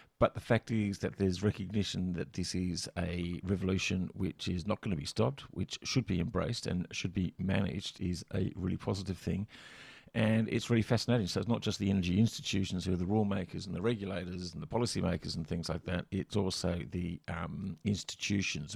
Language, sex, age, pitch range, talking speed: English, male, 50-69, 90-110 Hz, 205 wpm